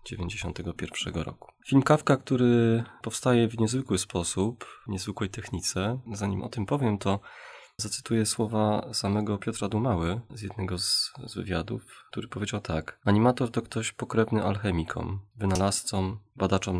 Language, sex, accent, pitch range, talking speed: Polish, male, native, 95-110 Hz, 130 wpm